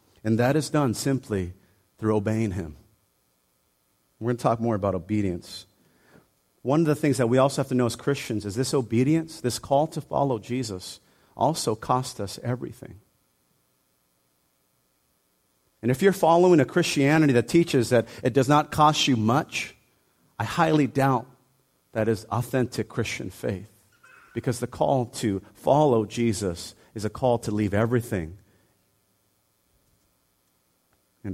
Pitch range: 100-130 Hz